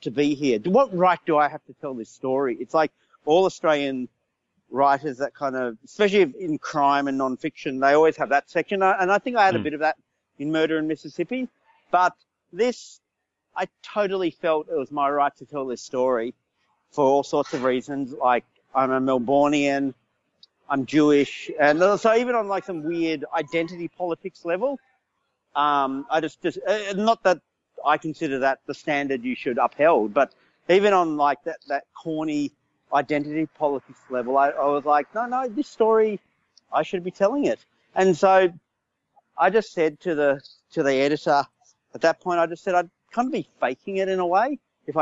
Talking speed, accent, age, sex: 185 wpm, Australian, 40-59, male